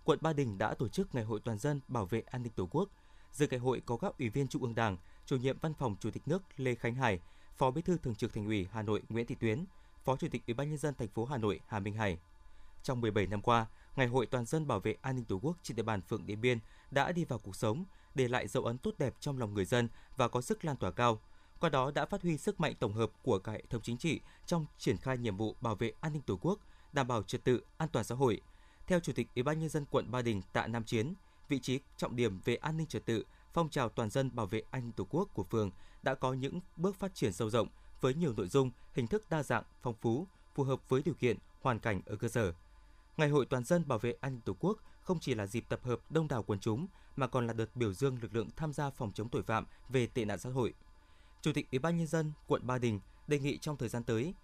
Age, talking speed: 20-39, 275 wpm